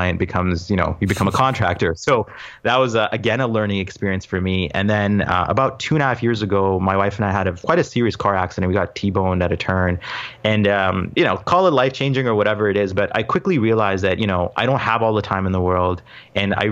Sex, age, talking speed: male, 30-49, 260 wpm